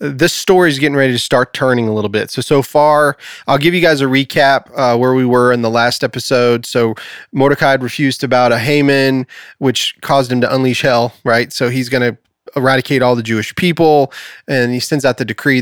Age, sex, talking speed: 30-49, male, 220 wpm